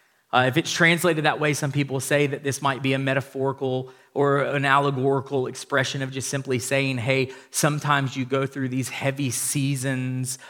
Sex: male